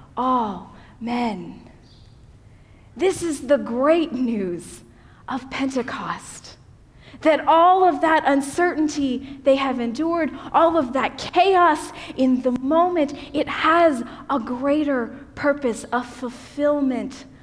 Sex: female